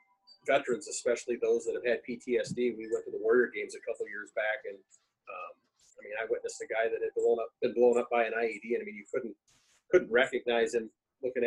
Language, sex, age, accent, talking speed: English, male, 30-49, American, 235 wpm